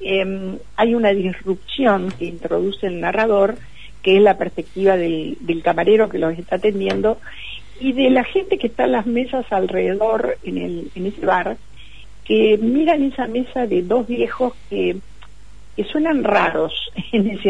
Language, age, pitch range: Spanish, 50-69, 180-250 Hz